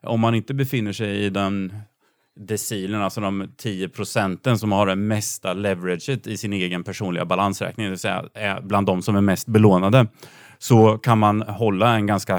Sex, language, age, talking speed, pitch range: male, Swedish, 30-49, 180 wpm, 95-115 Hz